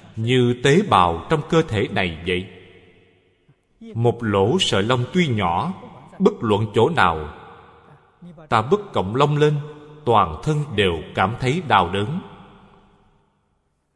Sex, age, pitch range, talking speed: male, 20-39, 100-160 Hz, 130 wpm